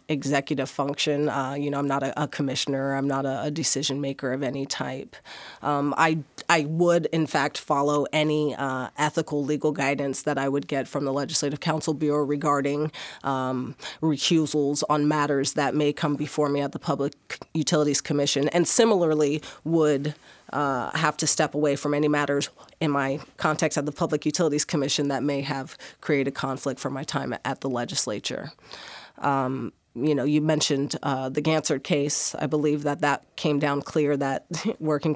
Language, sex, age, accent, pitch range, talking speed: English, female, 30-49, American, 140-155 Hz, 175 wpm